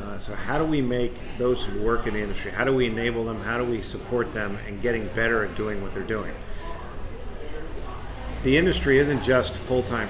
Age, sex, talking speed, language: 50-69, male, 210 wpm, English